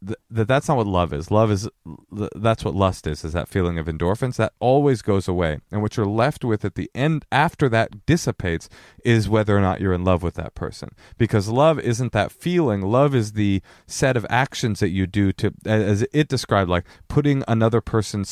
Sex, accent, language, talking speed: male, American, English, 210 wpm